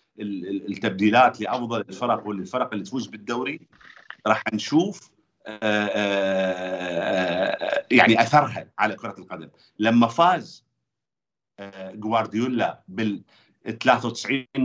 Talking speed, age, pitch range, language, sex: 85 wpm, 50-69, 115-145 Hz, Arabic, male